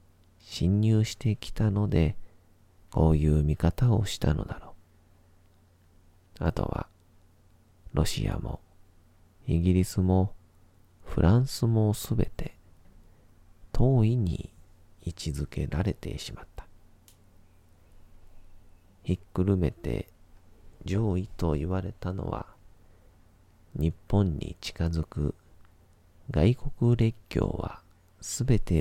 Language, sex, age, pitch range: Japanese, male, 40-59, 85-95 Hz